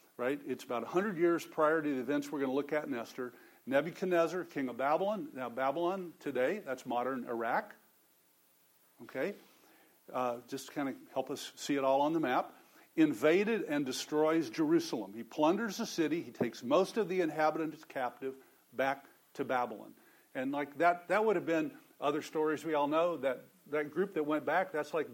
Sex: male